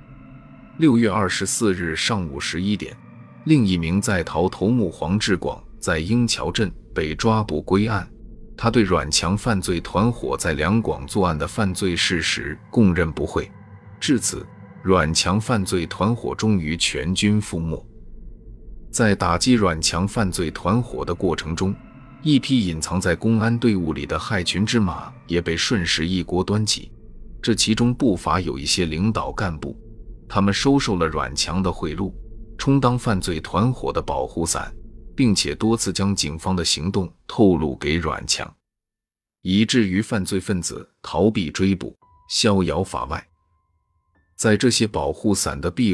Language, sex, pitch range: Chinese, male, 85-110 Hz